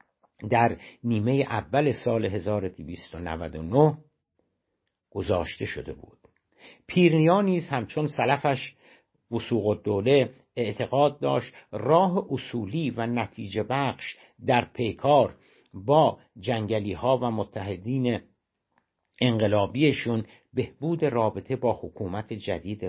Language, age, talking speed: Persian, 60-79, 85 wpm